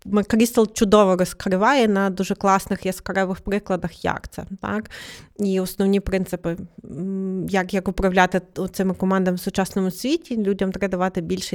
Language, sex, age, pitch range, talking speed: Ukrainian, female, 30-49, 190-210 Hz, 135 wpm